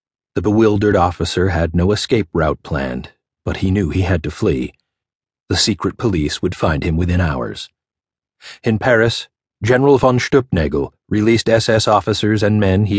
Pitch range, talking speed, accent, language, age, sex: 90-115 Hz, 155 wpm, American, English, 40-59, male